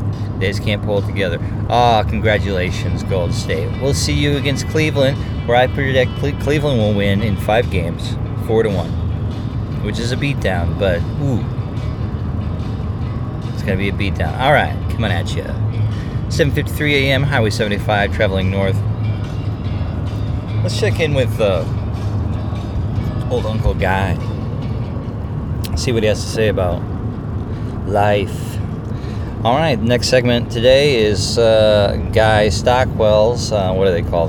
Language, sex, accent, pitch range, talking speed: English, male, American, 100-120 Hz, 140 wpm